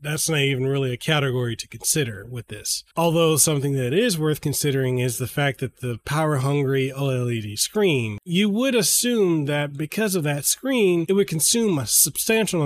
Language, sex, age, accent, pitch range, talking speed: English, male, 30-49, American, 130-185 Hz, 180 wpm